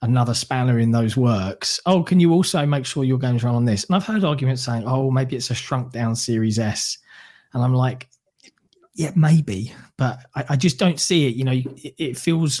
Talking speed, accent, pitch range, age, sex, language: 220 wpm, British, 120-140 Hz, 20-39, male, English